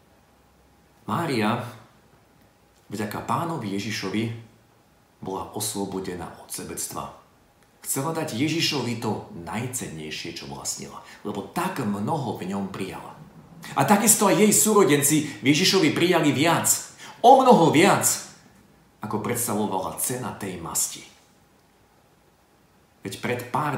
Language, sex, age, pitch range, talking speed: Slovak, male, 40-59, 100-155 Hz, 105 wpm